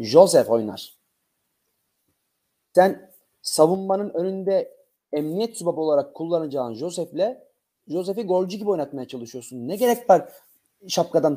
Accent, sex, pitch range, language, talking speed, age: native, male, 140-195 Hz, Turkish, 100 wpm, 40-59